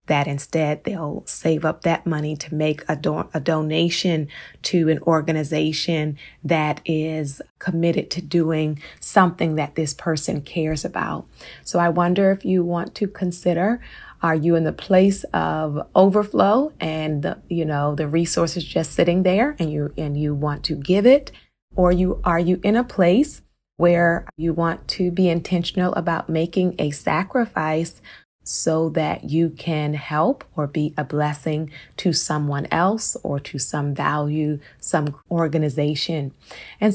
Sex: female